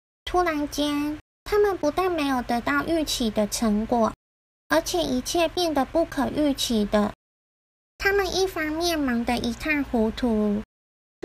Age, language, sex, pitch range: 20-39, Chinese, female, 240-325 Hz